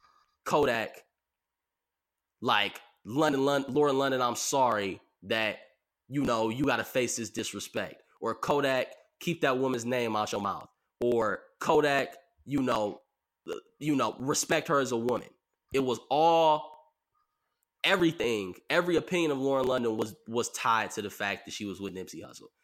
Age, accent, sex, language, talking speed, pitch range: 10-29, American, male, English, 150 wpm, 105-150 Hz